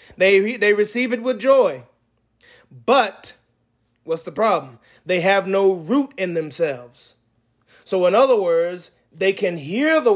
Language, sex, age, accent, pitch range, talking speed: English, male, 30-49, American, 135-210 Hz, 140 wpm